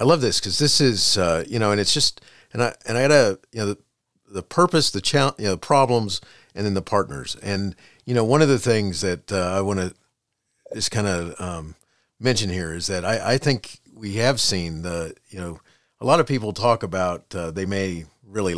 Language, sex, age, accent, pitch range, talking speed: English, male, 40-59, American, 90-120 Hz, 235 wpm